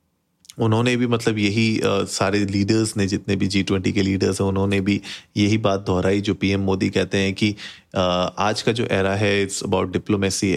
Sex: male